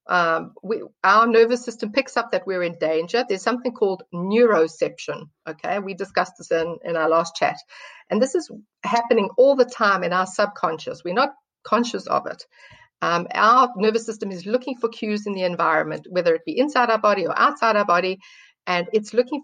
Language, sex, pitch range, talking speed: English, female, 180-235 Hz, 190 wpm